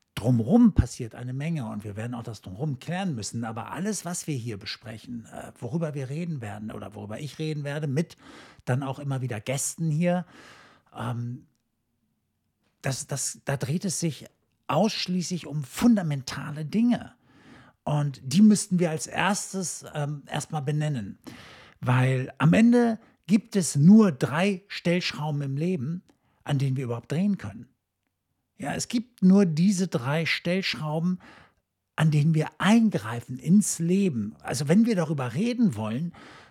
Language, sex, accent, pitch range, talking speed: German, male, German, 125-180 Hz, 140 wpm